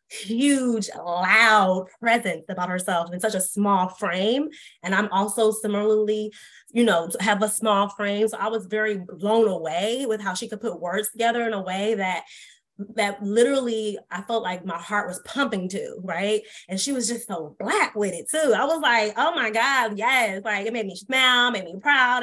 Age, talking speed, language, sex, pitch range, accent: 20-39, 195 wpm, English, female, 195-235 Hz, American